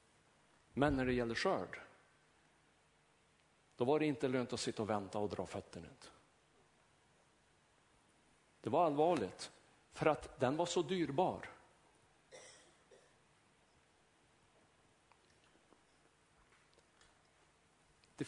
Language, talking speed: Swedish, 90 wpm